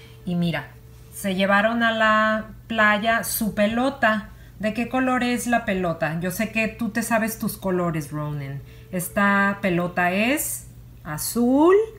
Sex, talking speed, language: female, 140 wpm, English